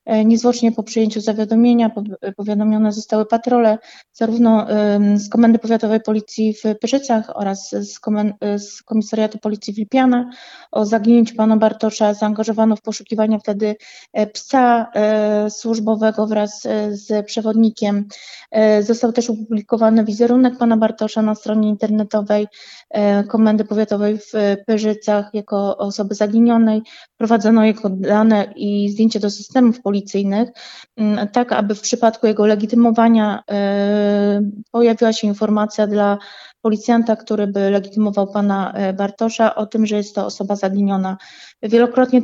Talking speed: 115 wpm